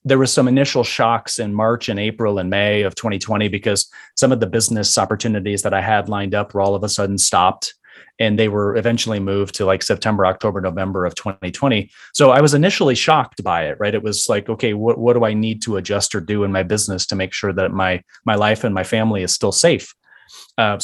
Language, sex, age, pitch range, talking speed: English, male, 30-49, 100-120 Hz, 230 wpm